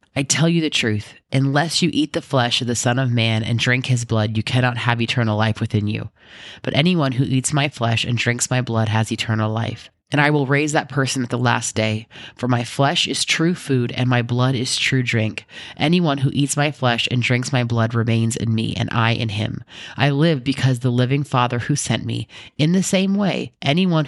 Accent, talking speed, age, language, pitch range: American, 225 wpm, 30-49, English, 115-140 Hz